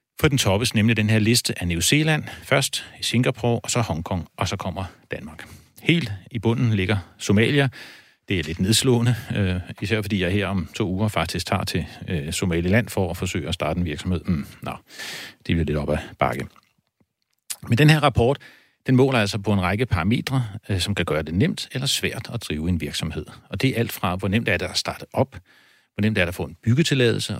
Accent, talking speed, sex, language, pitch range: native, 215 wpm, male, Danish, 95-120 Hz